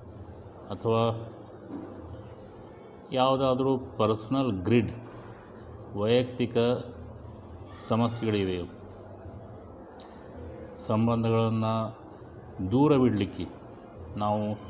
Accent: native